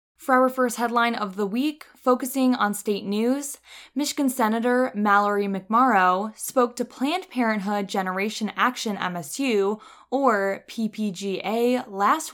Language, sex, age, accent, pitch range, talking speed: English, female, 20-39, American, 200-255 Hz, 120 wpm